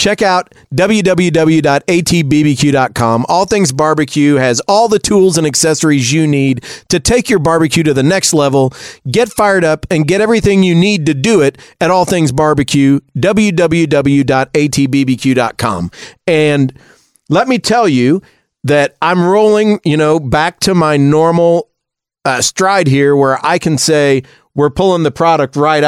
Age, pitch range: 40-59, 140-175 Hz